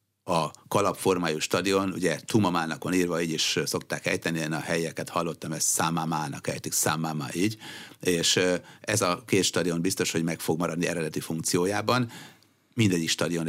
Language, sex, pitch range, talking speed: Hungarian, male, 80-95 Hz, 140 wpm